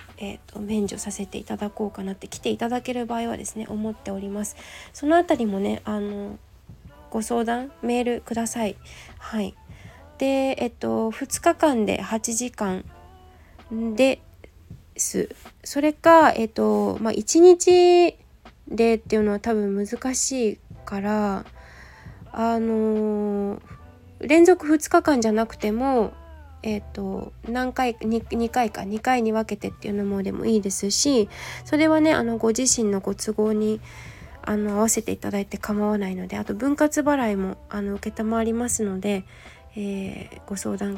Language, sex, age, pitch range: Japanese, female, 20-39, 195-245 Hz